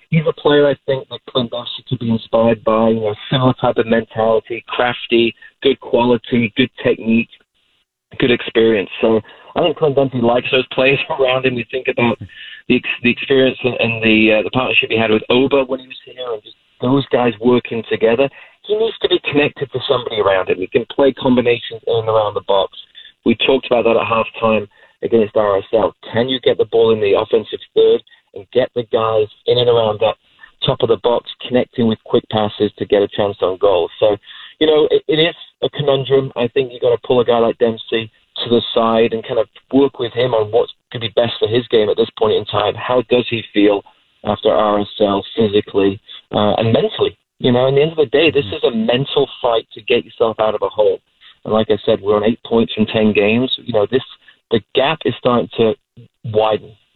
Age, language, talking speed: 30-49, English, 220 wpm